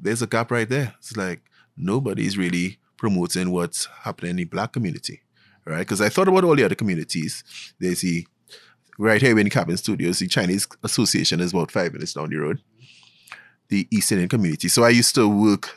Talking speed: 200 wpm